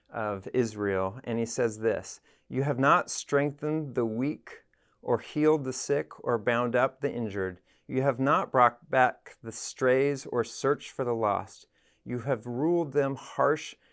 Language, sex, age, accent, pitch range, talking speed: English, male, 40-59, American, 115-135 Hz, 165 wpm